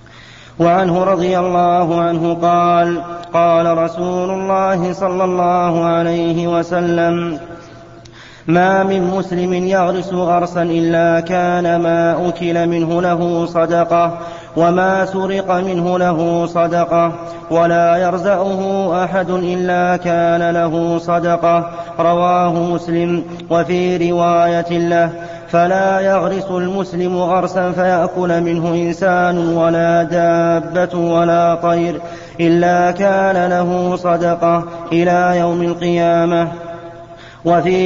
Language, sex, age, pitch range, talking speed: Arabic, male, 30-49, 170-180 Hz, 95 wpm